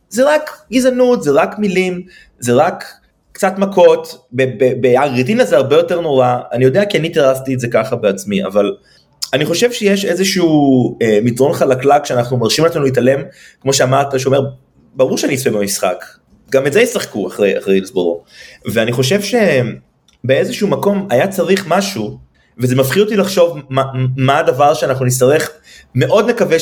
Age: 30-49